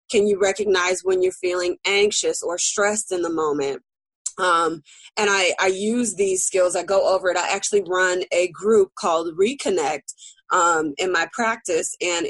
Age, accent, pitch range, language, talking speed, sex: 20-39, American, 185-240 Hz, English, 170 wpm, female